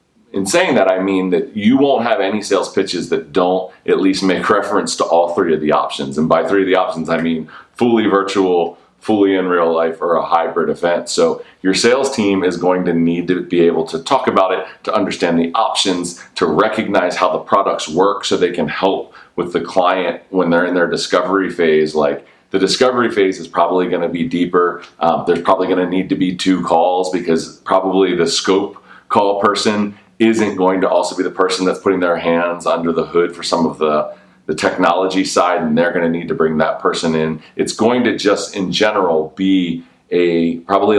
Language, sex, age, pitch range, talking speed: English, male, 30-49, 80-95 Hz, 210 wpm